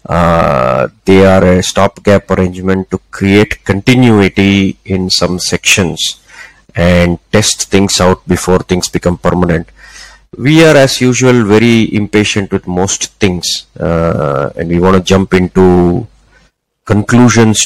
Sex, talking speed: male, 125 wpm